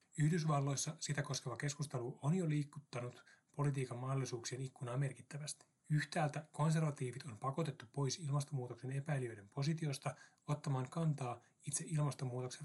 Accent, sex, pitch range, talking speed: native, male, 125-150 Hz, 110 wpm